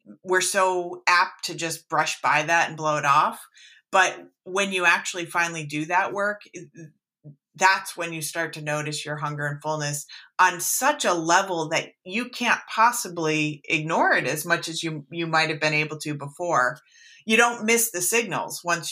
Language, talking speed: English, 180 wpm